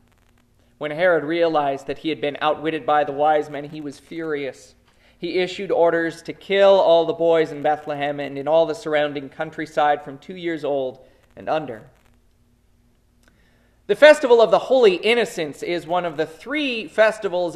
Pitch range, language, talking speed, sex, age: 150-200 Hz, English, 170 wpm, male, 30-49